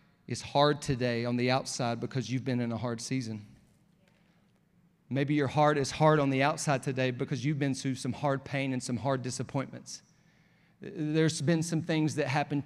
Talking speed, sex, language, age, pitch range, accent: 185 wpm, male, English, 40-59, 135-175 Hz, American